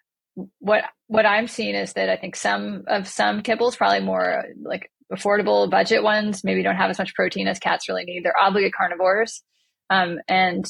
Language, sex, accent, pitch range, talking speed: English, female, American, 170-210 Hz, 185 wpm